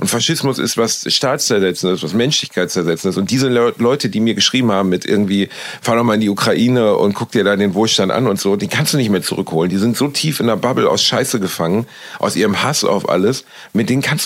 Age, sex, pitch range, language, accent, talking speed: 40-59, male, 105-145 Hz, German, German, 235 wpm